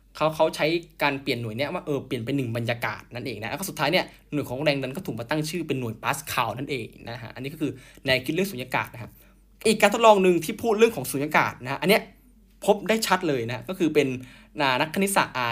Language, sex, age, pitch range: Thai, male, 10-29, 125-175 Hz